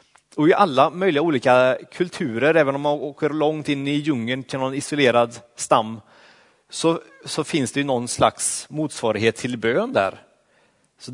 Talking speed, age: 155 wpm, 30-49